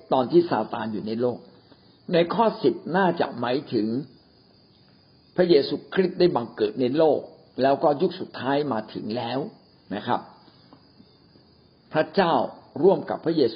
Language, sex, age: Thai, male, 60-79